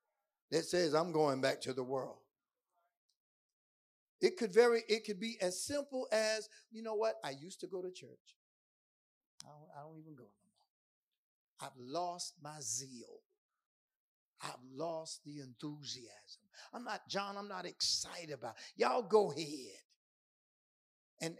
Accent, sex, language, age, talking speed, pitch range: American, male, English, 50-69, 150 wpm, 145-200 Hz